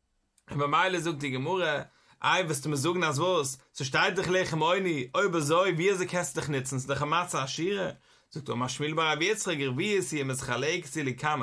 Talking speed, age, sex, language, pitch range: 175 wpm, 30-49, male, English, 145-190 Hz